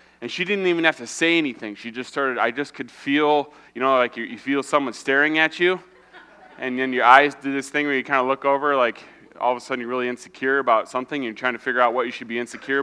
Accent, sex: American, male